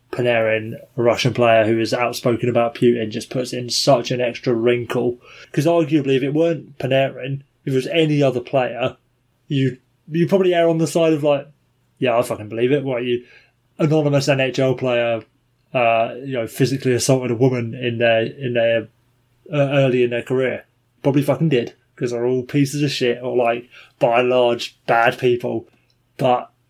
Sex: male